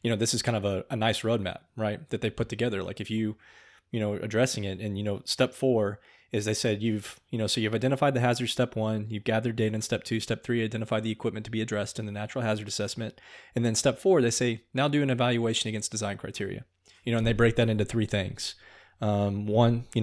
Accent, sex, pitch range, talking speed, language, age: American, male, 105-120 Hz, 250 wpm, English, 20-39